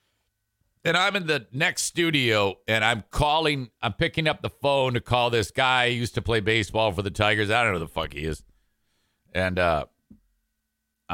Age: 50-69